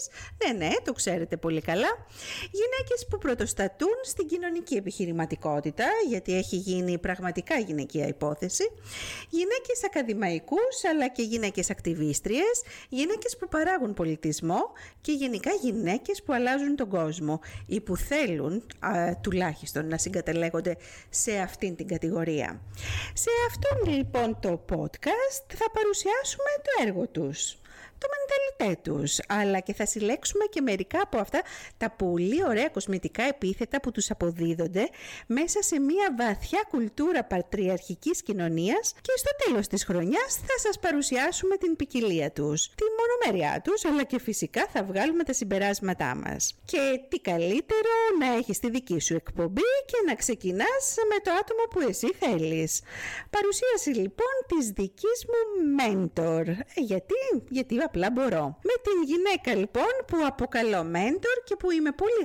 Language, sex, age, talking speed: Greek, female, 50-69, 135 wpm